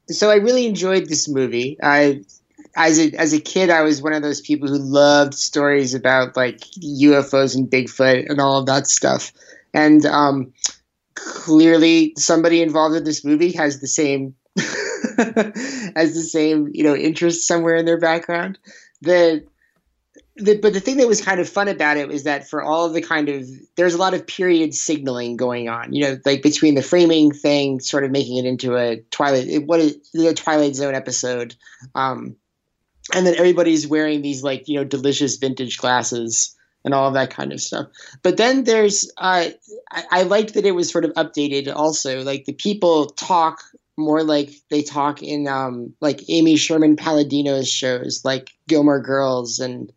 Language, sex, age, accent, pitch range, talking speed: English, male, 30-49, American, 135-165 Hz, 185 wpm